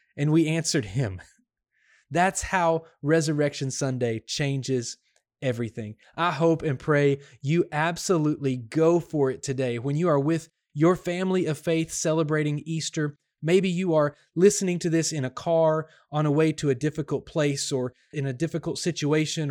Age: 20-39